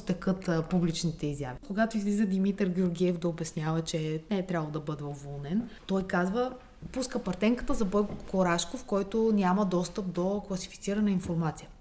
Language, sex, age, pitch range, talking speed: Bulgarian, female, 20-39, 175-220 Hz, 145 wpm